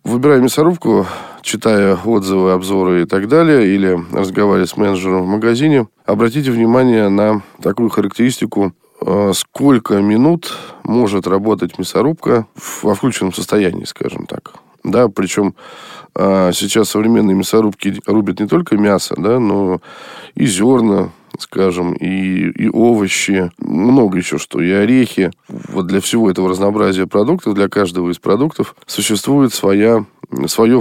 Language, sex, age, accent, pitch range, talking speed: Russian, male, 20-39, native, 95-115 Hz, 125 wpm